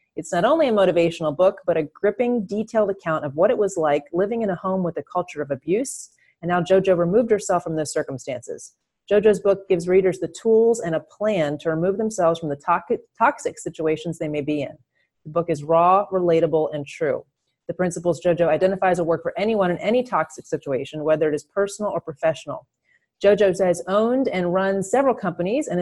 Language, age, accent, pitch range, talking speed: English, 30-49, American, 160-200 Hz, 200 wpm